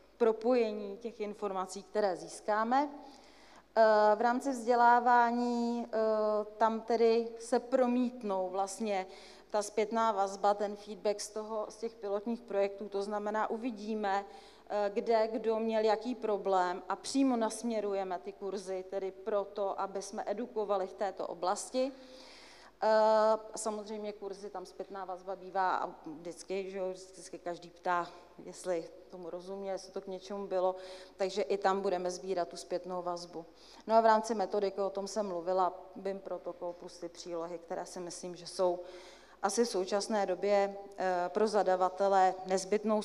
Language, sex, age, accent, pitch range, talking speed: Czech, female, 40-59, native, 185-215 Hz, 140 wpm